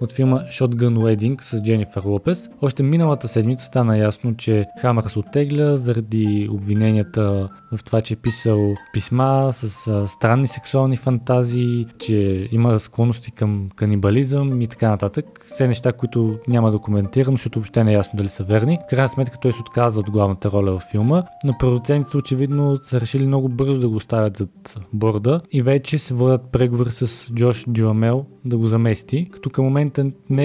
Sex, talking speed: male, 170 wpm